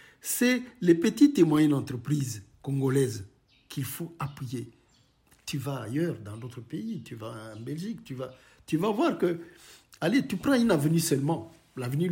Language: French